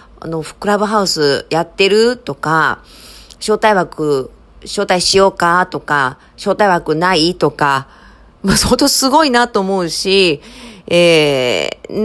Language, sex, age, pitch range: Japanese, female, 40-59, 160-225 Hz